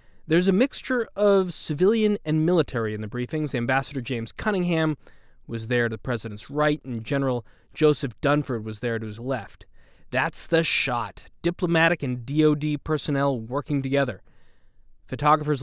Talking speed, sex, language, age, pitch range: 145 wpm, male, English, 20-39, 125-160 Hz